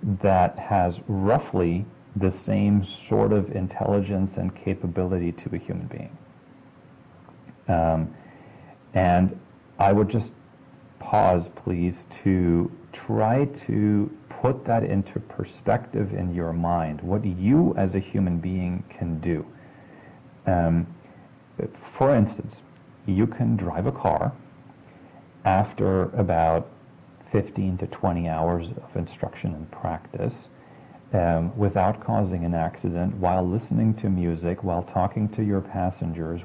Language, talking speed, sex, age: English, 115 wpm, male, 40-59